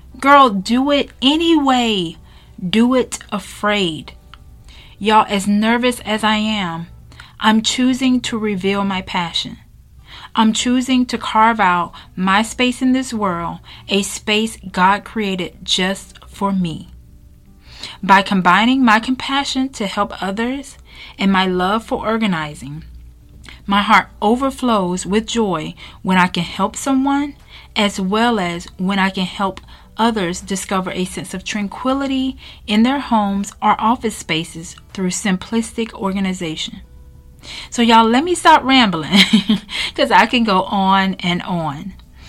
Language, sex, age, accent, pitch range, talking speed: English, female, 40-59, American, 180-230 Hz, 135 wpm